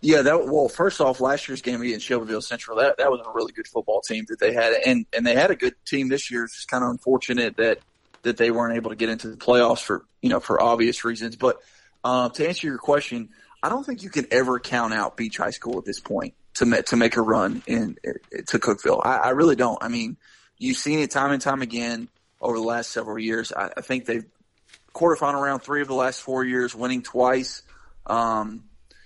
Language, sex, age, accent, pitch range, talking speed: English, male, 30-49, American, 115-140 Hz, 240 wpm